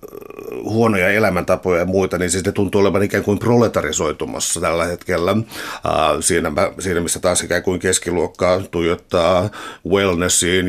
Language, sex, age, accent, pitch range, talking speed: Finnish, male, 60-79, native, 90-100 Hz, 125 wpm